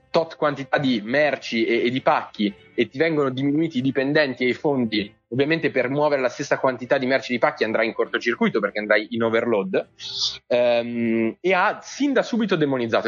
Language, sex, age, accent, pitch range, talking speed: Italian, male, 20-39, native, 120-170 Hz, 195 wpm